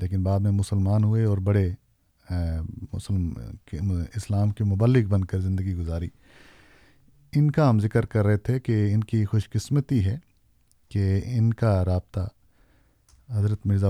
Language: Urdu